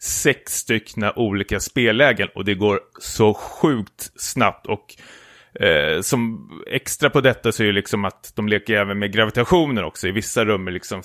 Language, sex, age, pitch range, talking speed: Swedish, male, 30-49, 90-120 Hz, 170 wpm